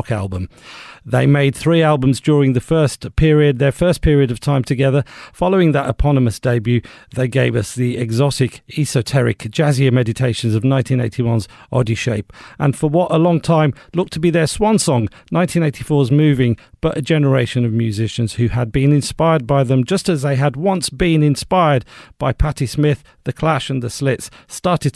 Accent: British